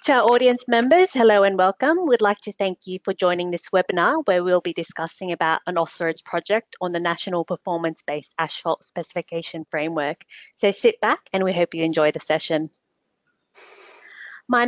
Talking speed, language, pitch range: 170 wpm, English, 165-205 Hz